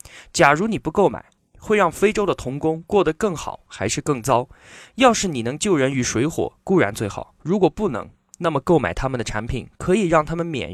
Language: Chinese